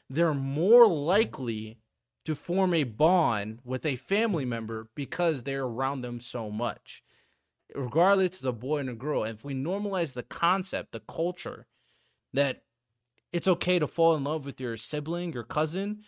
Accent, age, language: American, 30-49, English